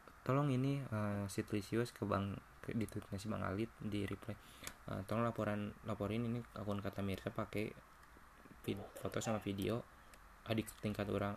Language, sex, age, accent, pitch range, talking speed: Indonesian, male, 20-39, native, 100-110 Hz, 145 wpm